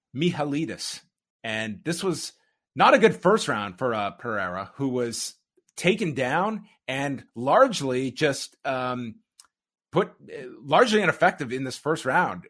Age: 30-49